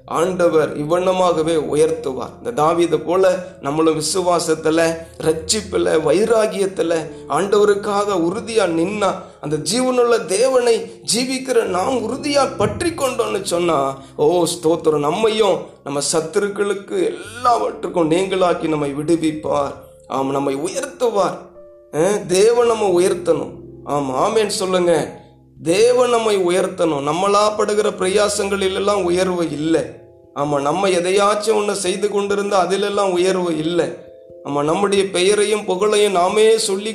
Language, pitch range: Tamil, 160-215 Hz